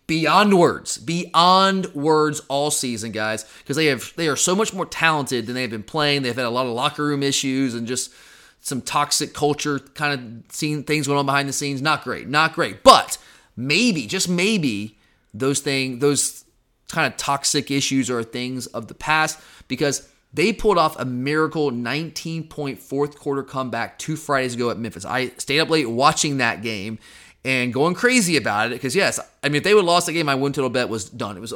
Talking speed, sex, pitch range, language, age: 205 wpm, male, 130-160 Hz, English, 30-49